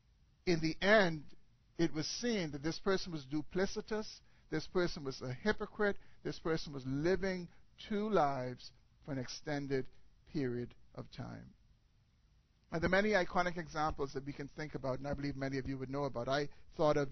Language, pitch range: English, 130-170 Hz